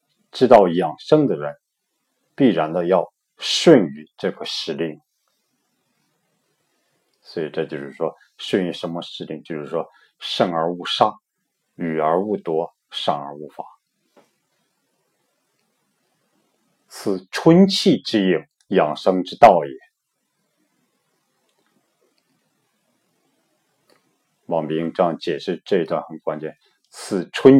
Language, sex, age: Chinese, male, 50-69